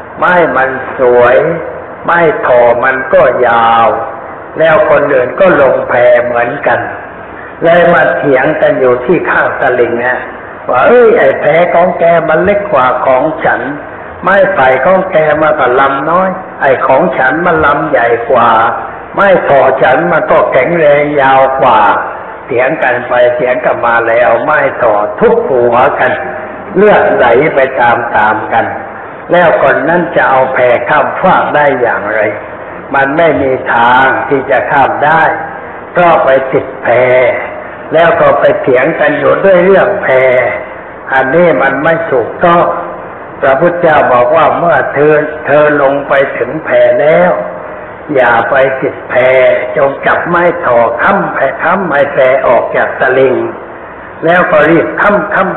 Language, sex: Thai, male